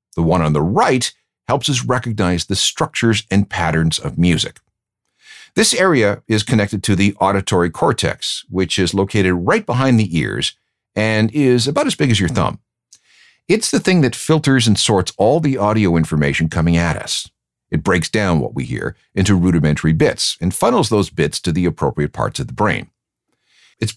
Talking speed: 180 wpm